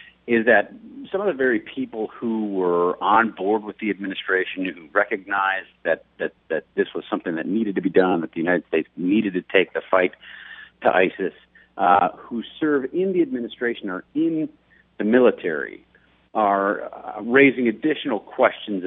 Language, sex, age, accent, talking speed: English, male, 50-69, American, 165 wpm